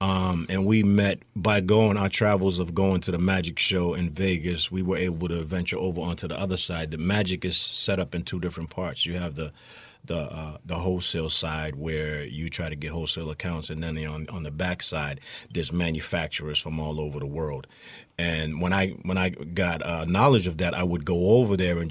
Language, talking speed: English, 220 wpm